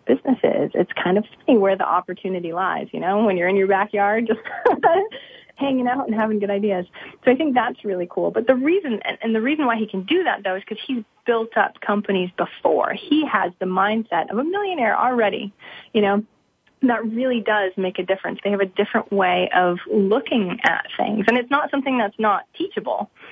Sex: female